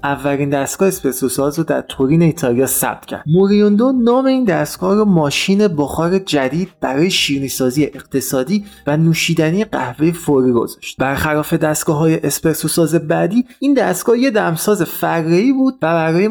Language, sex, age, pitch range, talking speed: Persian, male, 30-49, 135-185 Hz, 135 wpm